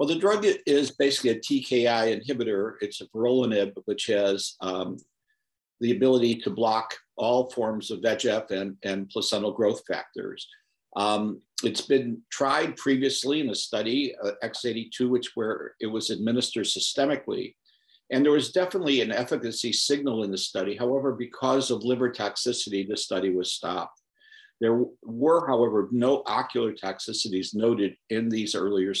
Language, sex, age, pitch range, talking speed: English, male, 50-69, 105-135 Hz, 145 wpm